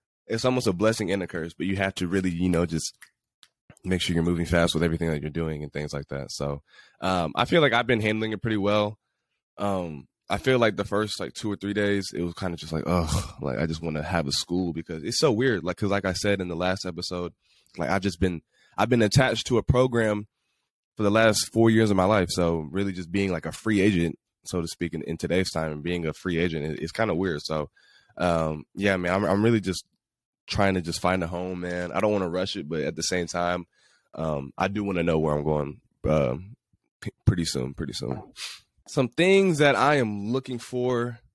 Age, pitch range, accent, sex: 20-39, 85-105 Hz, American, male